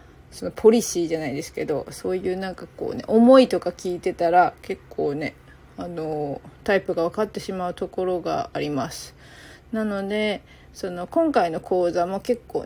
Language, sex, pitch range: Japanese, female, 175-220 Hz